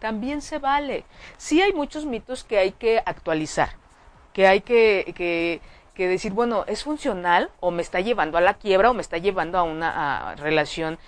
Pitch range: 180-270 Hz